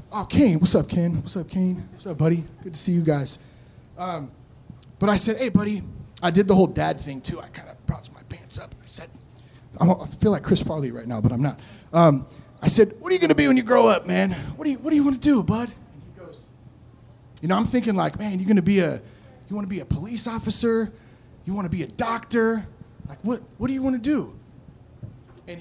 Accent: American